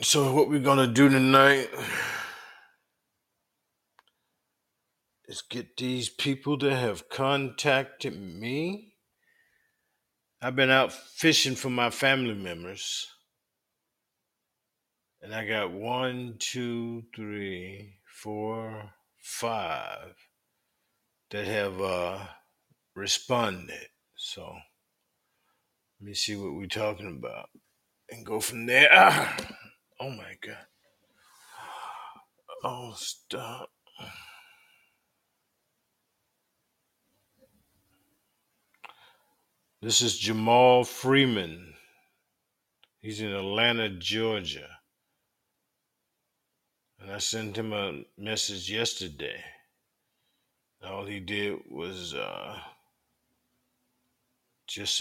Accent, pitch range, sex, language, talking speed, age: American, 100-130 Hz, male, English, 80 wpm, 50-69